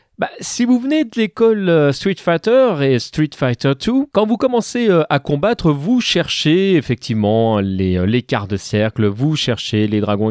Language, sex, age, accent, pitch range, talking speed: French, male, 30-49, French, 130-210 Hz, 170 wpm